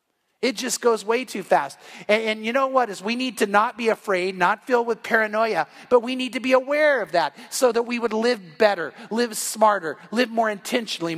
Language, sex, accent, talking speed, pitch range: English, male, American, 220 wpm, 195-235 Hz